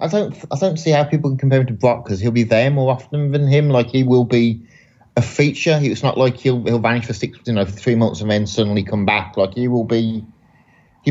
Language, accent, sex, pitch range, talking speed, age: English, British, male, 105-125 Hz, 260 wpm, 30-49